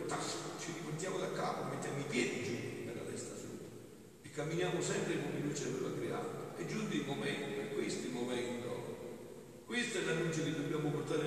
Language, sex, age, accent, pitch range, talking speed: Italian, male, 50-69, native, 155-195 Hz, 180 wpm